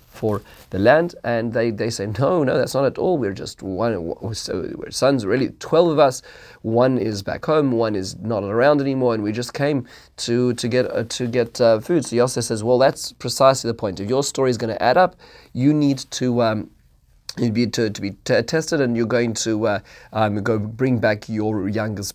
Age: 30-49